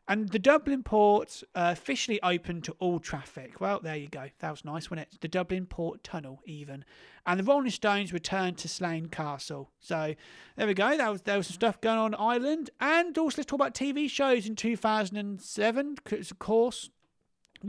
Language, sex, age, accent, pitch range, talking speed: English, male, 30-49, British, 175-245 Hz, 205 wpm